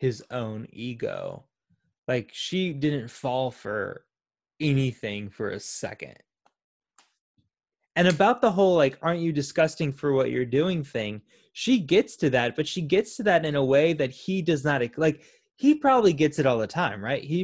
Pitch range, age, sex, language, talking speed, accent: 125-180 Hz, 20-39, male, English, 175 wpm, American